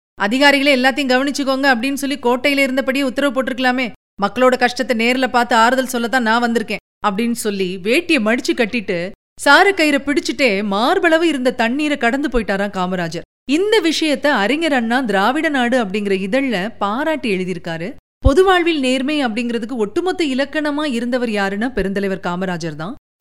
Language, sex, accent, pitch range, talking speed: Tamil, female, native, 220-285 Hz, 130 wpm